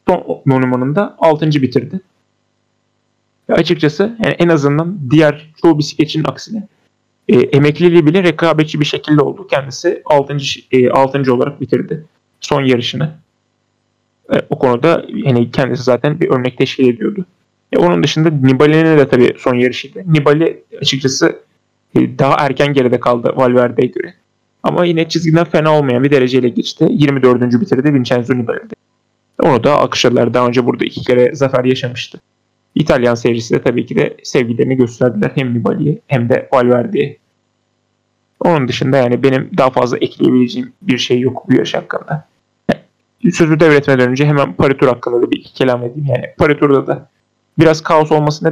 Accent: native